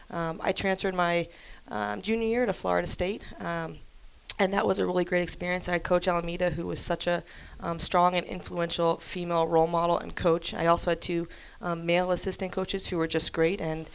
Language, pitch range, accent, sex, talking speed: English, 165-180 Hz, American, female, 205 wpm